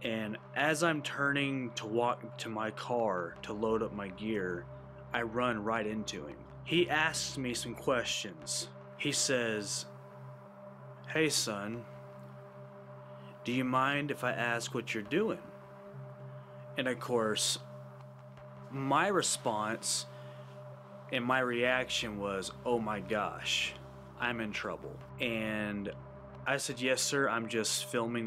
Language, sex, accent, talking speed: English, male, American, 125 wpm